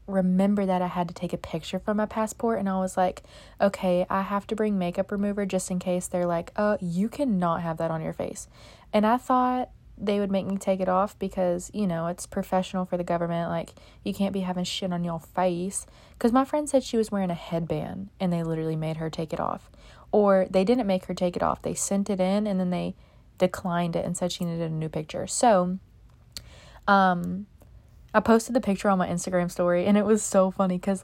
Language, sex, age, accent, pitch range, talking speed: English, female, 20-39, American, 175-205 Hz, 230 wpm